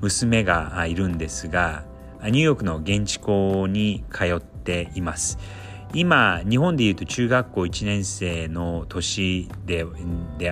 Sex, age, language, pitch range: male, 40-59, Japanese, 85-115 Hz